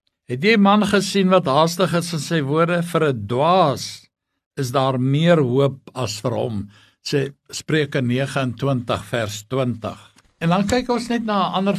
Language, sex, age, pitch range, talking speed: English, male, 60-79, 135-180 Hz, 165 wpm